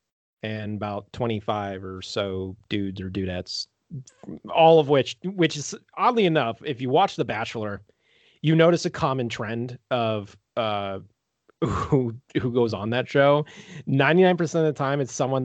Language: English